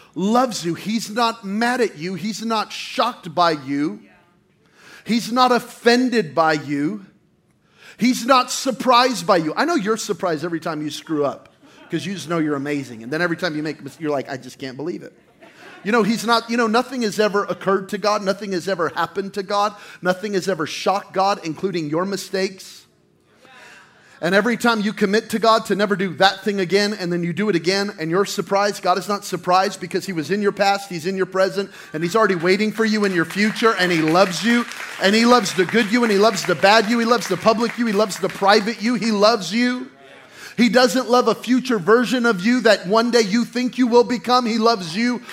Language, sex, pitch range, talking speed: English, male, 180-235 Hz, 225 wpm